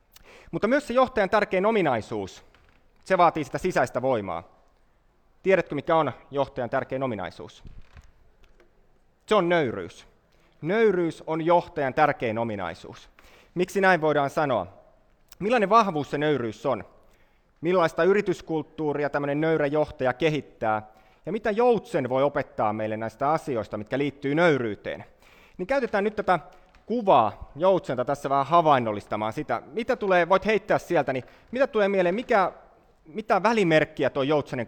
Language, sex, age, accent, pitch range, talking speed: Finnish, male, 30-49, native, 140-190 Hz, 130 wpm